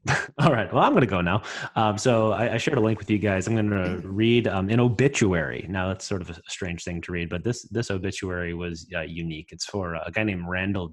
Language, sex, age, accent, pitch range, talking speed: English, male, 30-49, American, 90-110 Hz, 280 wpm